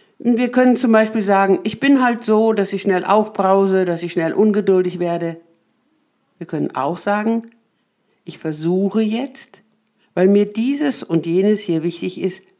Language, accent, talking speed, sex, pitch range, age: German, German, 155 wpm, female, 170-220 Hz, 60-79